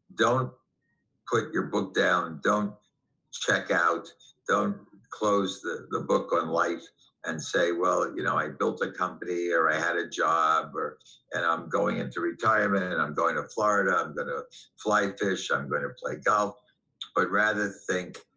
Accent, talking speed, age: American, 175 wpm, 60-79